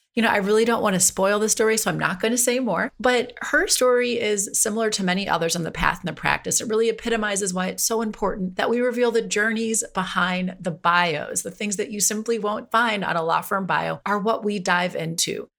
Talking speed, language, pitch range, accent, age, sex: 245 wpm, English, 180-225 Hz, American, 30-49, female